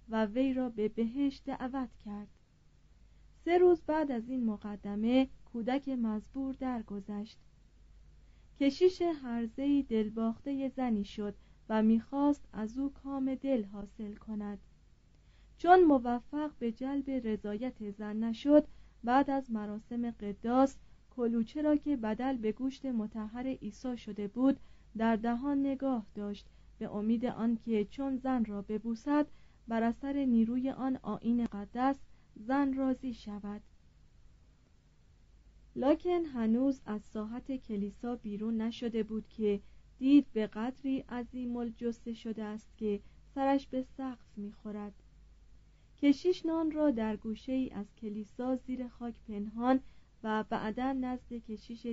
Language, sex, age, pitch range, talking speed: Persian, female, 30-49, 215-265 Hz, 120 wpm